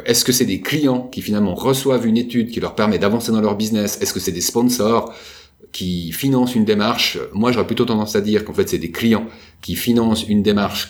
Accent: French